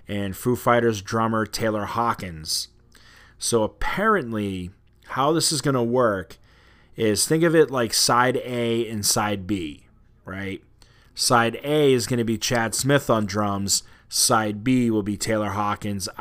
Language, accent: English, American